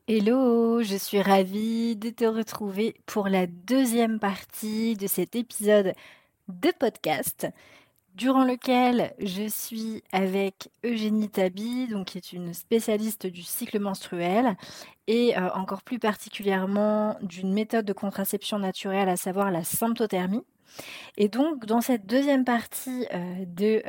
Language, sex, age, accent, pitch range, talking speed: French, female, 30-49, French, 195-230 Hz, 125 wpm